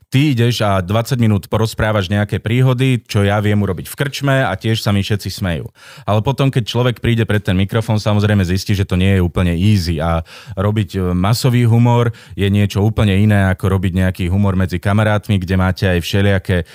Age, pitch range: 30-49, 95-115 Hz